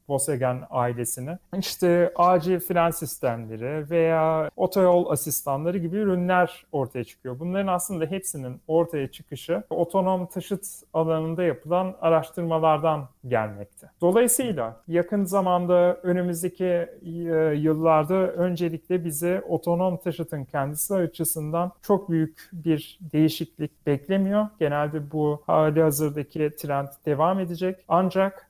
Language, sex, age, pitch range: Turkish, male, 40-59, 155-180 Hz